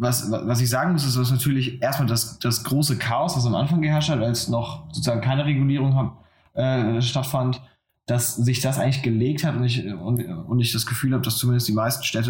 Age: 20-39